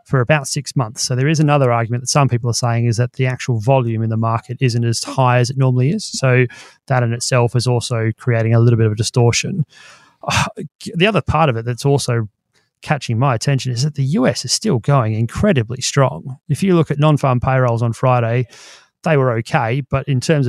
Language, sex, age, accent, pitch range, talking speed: English, male, 30-49, Australian, 120-140 Hz, 225 wpm